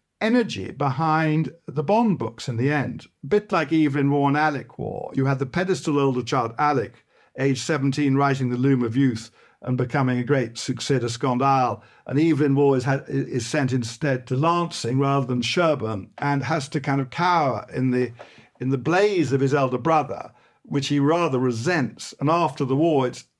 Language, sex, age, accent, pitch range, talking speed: English, male, 50-69, British, 125-155 Hz, 180 wpm